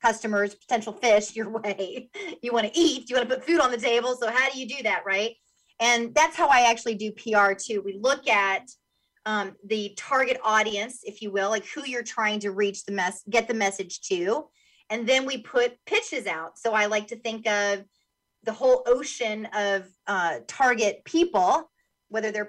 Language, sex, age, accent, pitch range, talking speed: English, female, 30-49, American, 215-255 Hz, 200 wpm